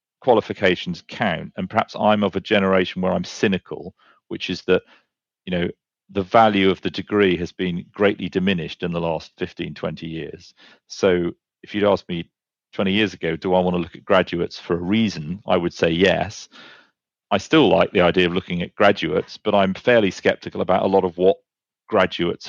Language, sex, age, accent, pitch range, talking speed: English, male, 40-59, British, 90-100 Hz, 190 wpm